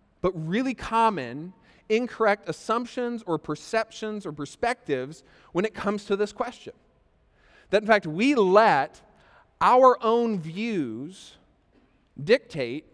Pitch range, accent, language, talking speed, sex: 160-215 Hz, American, English, 110 wpm, male